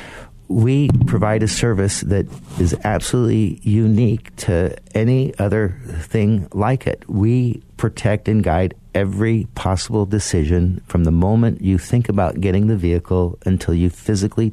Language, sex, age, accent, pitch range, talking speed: English, male, 50-69, American, 95-115 Hz, 135 wpm